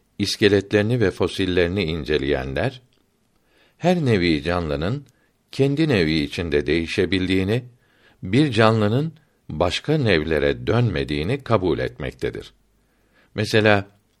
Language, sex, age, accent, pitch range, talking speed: Turkish, male, 60-79, native, 85-120 Hz, 80 wpm